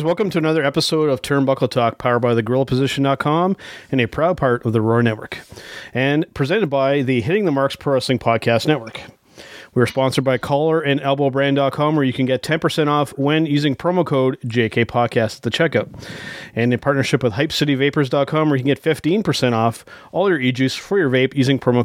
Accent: American